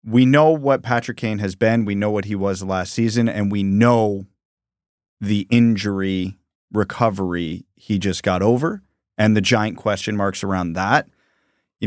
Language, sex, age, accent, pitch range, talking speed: English, male, 30-49, American, 100-120 Hz, 160 wpm